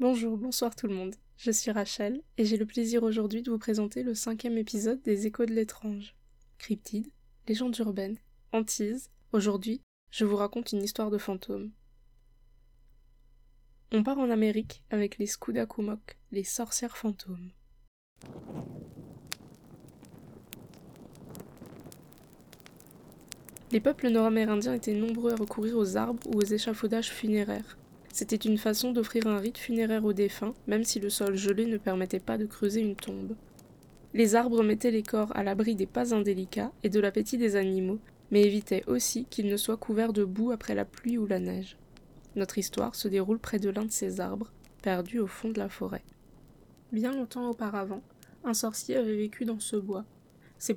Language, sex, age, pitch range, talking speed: French, female, 20-39, 205-230 Hz, 160 wpm